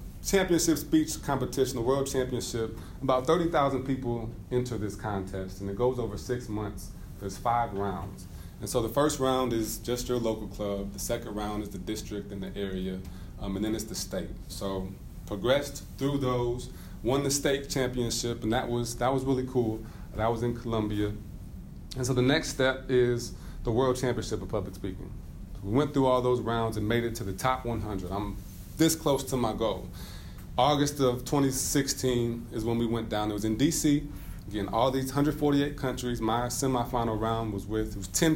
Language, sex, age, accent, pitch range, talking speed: English, male, 30-49, American, 100-125 Hz, 190 wpm